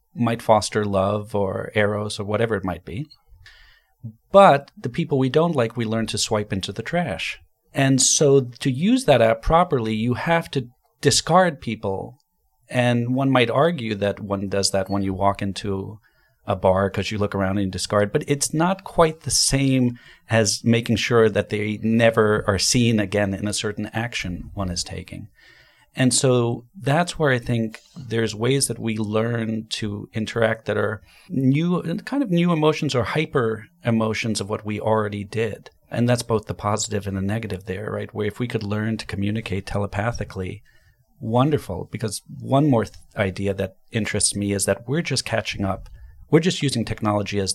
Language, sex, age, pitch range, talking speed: English, male, 40-59, 105-130 Hz, 180 wpm